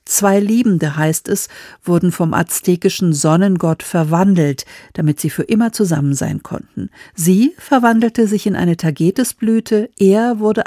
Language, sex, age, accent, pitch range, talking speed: German, female, 50-69, German, 155-195 Hz, 135 wpm